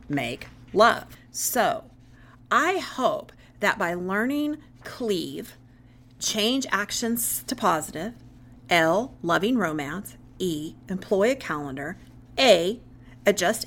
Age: 40-59